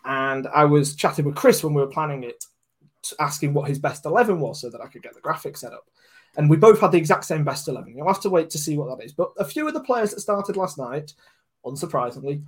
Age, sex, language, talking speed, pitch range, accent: 20-39, male, English, 265 wpm, 140-175 Hz, British